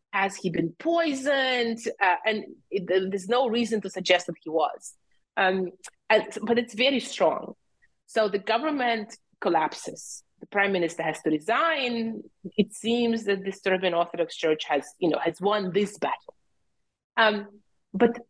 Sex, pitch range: female, 185-240 Hz